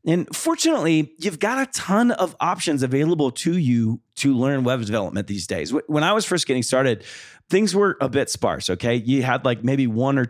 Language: English